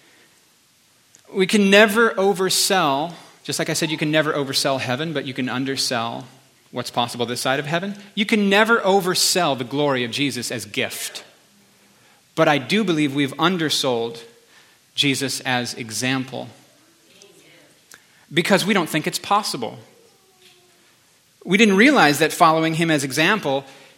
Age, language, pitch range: 30-49, English, 130-170 Hz